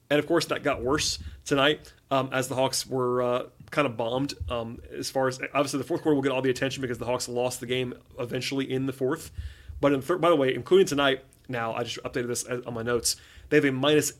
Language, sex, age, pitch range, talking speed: English, male, 30-49, 125-155 Hz, 255 wpm